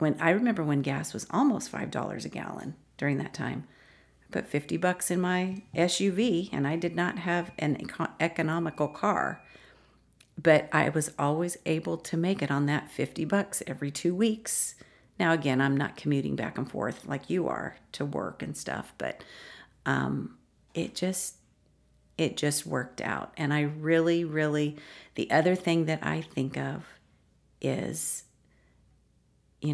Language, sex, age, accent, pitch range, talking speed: English, female, 40-59, American, 140-170 Hz, 165 wpm